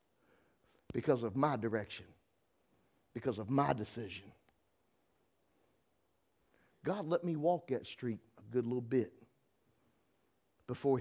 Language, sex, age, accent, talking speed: English, male, 60-79, American, 105 wpm